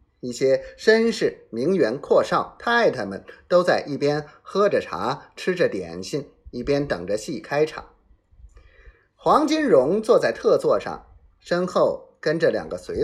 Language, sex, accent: Chinese, male, native